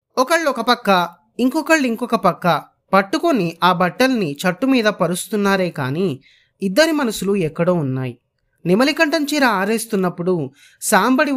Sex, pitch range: male, 150-235 Hz